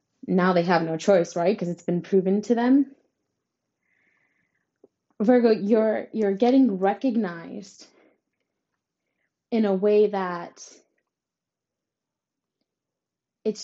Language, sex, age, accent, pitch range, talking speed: English, female, 20-39, American, 190-230 Hz, 95 wpm